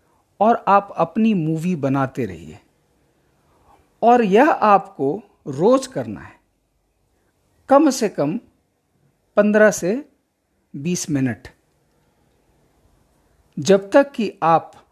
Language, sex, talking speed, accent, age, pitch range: English, male, 95 wpm, Indian, 50-69, 135-205 Hz